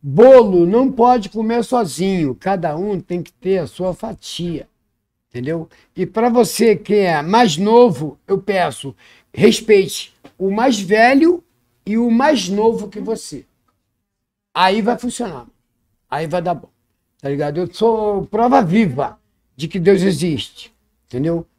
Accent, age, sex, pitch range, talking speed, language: Brazilian, 50-69, male, 170-225 Hz, 140 wpm, Portuguese